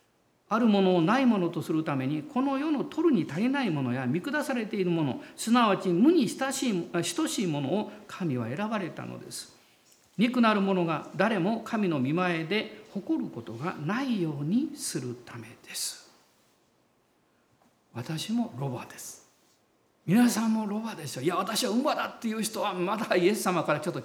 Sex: male